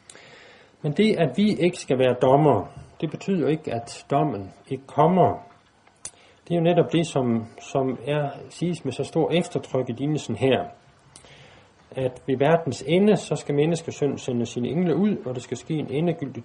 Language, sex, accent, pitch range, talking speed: Danish, male, native, 120-160 Hz, 180 wpm